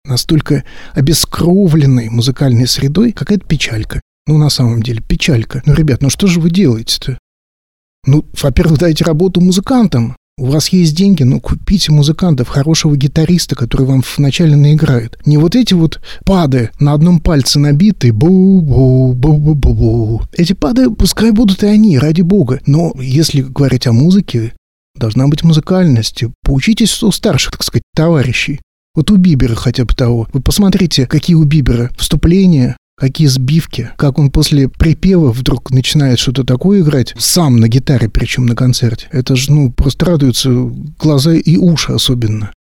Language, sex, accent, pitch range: Russian, male, native, 125-170 Hz